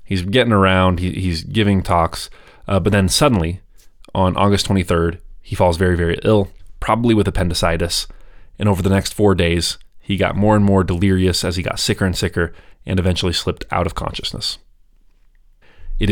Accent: American